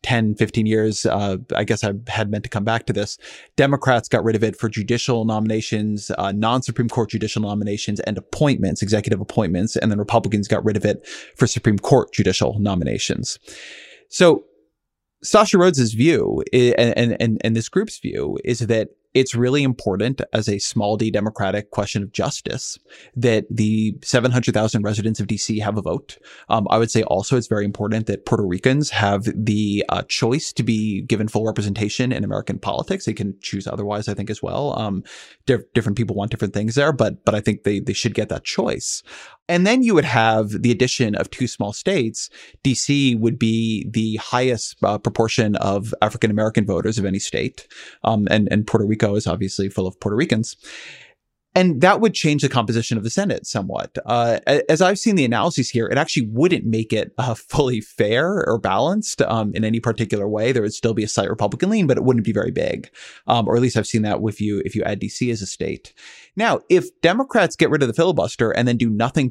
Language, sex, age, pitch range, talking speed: English, male, 20-39, 105-125 Hz, 205 wpm